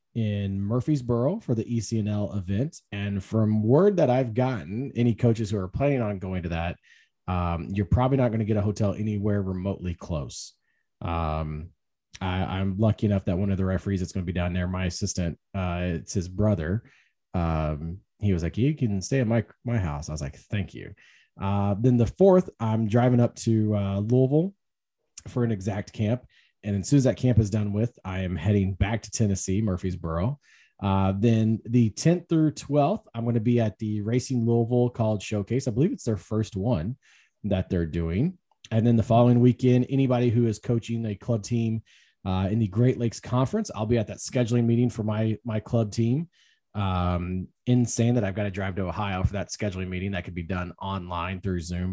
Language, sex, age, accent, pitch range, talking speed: English, male, 30-49, American, 95-120 Hz, 200 wpm